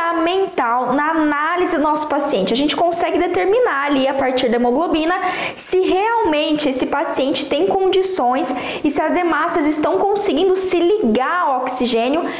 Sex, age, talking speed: female, 10-29, 150 wpm